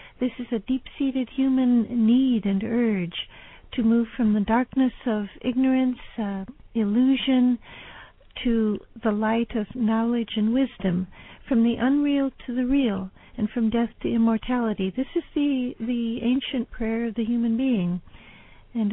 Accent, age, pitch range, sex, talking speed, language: American, 60-79, 215-250 Hz, female, 145 wpm, English